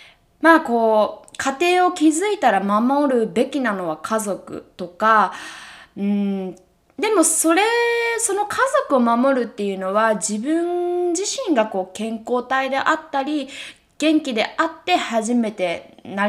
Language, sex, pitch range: Japanese, female, 195-295 Hz